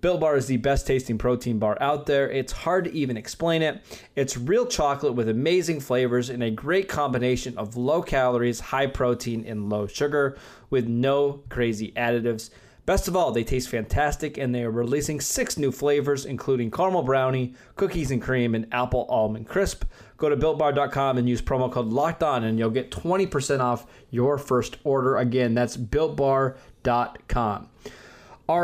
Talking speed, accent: 170 wpm, American